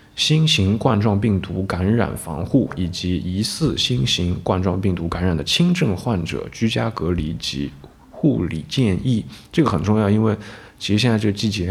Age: 20-39